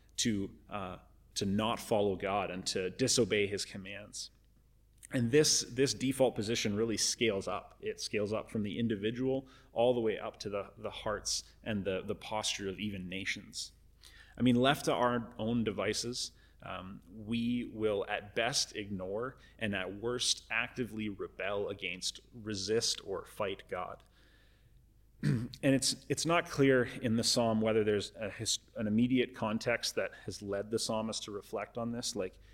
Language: English